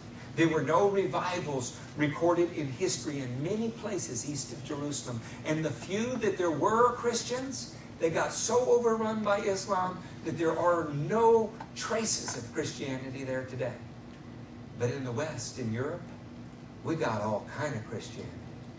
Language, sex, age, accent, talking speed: English, male, 60-79, American, 150 wpm